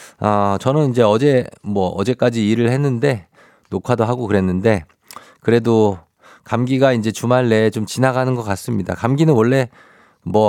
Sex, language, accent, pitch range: male, Korean, native, 100-135 Hz